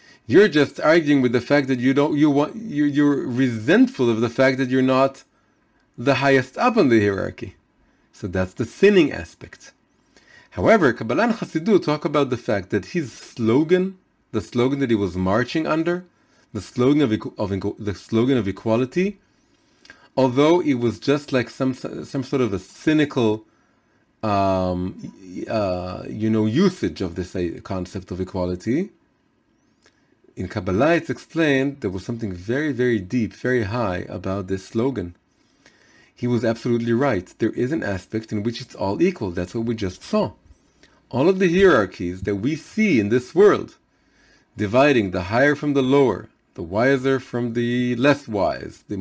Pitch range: 105-150 Hz